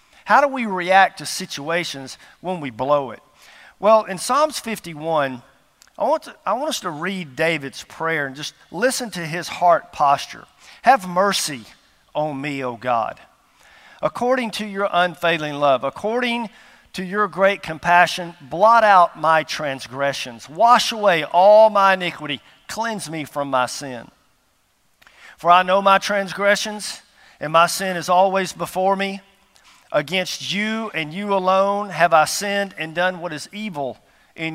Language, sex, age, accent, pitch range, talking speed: English, male, 50-69, American, 155-205 Hz, 150 wpm